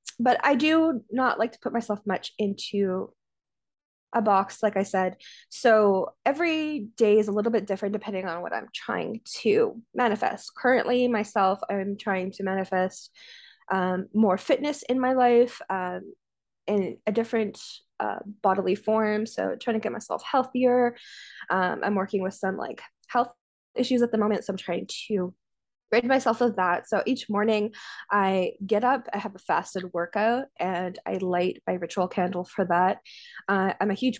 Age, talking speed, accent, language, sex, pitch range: 10-29, 170 wpm, American, English, female, 185-235 Hz